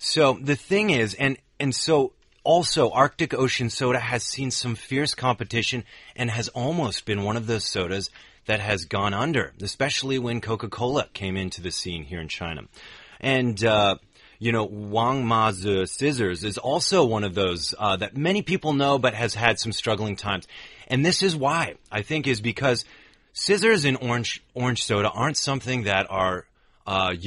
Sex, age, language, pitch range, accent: male, 30-49, Chinese, 105-135 Hz, American